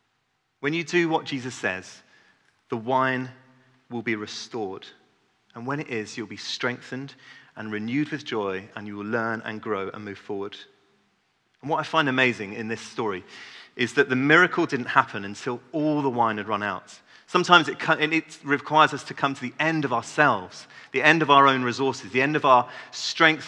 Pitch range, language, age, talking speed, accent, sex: 115-150 Hz, English, 30-49, 190 wpm, British, male